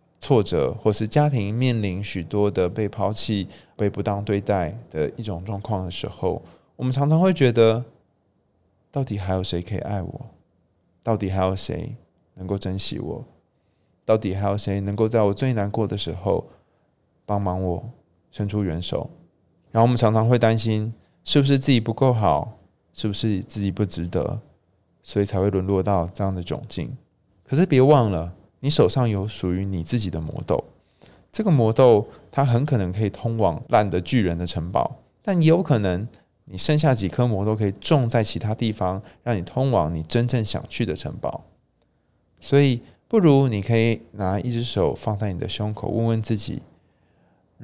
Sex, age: male, 20-39